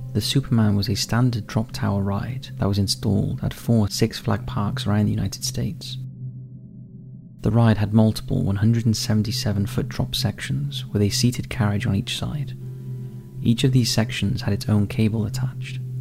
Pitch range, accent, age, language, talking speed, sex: 105-125 Hz, British, 30-49, English, 165 wpm, male